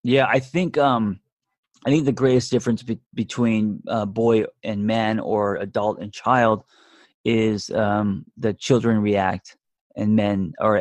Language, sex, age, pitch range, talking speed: English, male, 20-39, 100-125 Hz, 150 wpm